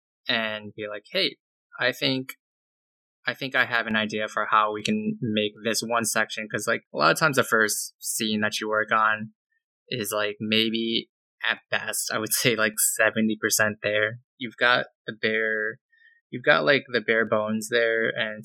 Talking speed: 180 wpm